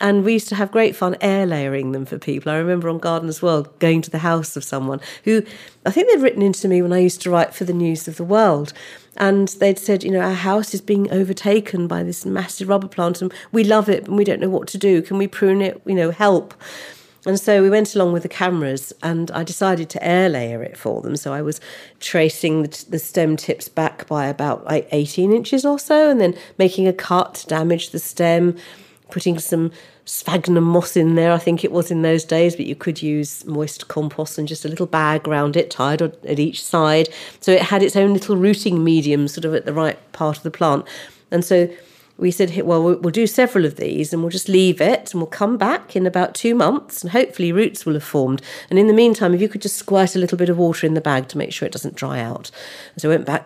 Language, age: English, 50-69